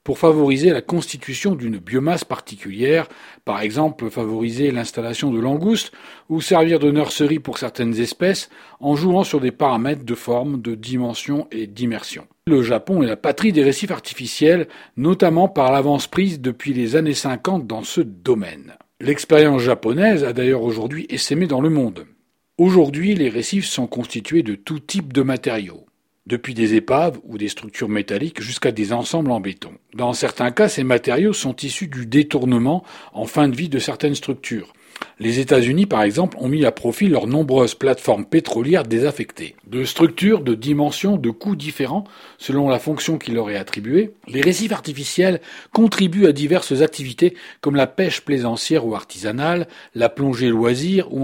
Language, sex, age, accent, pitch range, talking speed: French, male, 40-59, French, 120-165 Hz, 165 wpm